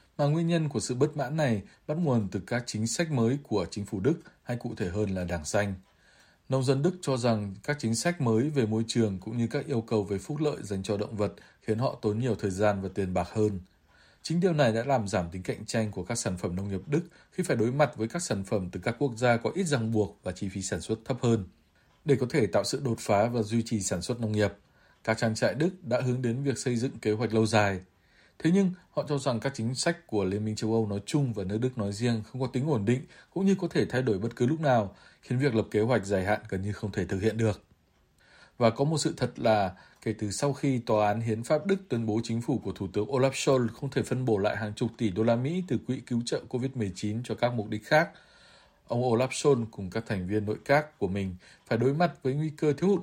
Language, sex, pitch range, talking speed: Vietnamese, male, 105-135 Hz, 270 wpm